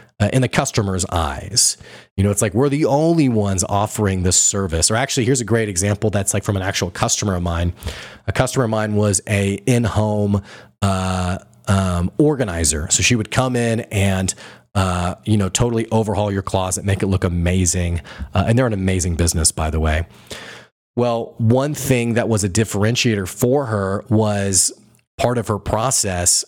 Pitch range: 95-120 Hz